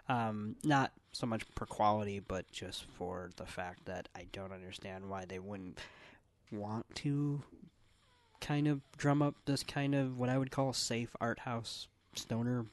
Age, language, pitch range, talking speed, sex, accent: 20-39, English, 100-135 Hz, 165 wpm, male, American